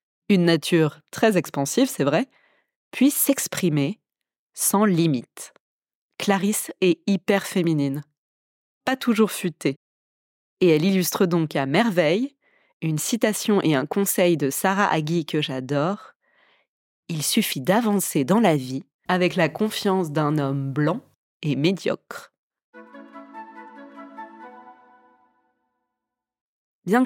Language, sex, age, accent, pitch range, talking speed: French, female, 20-39, French, 150-230 Hz, 105 wpm